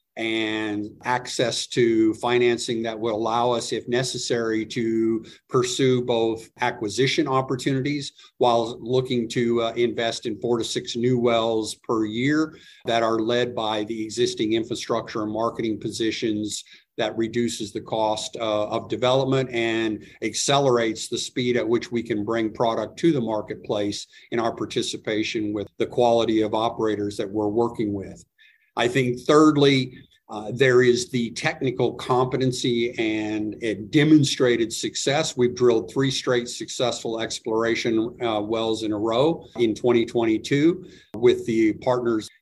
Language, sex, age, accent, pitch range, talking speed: English, male, 50-69, American, 110-125 Hz, 140 wpm